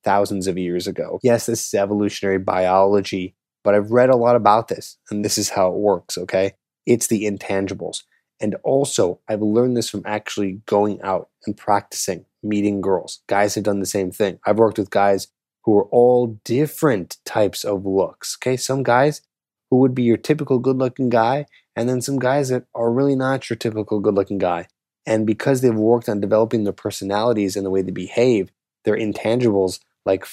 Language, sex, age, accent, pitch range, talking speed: English, male, 20-39, American, 100-120 Hz, 190 wpm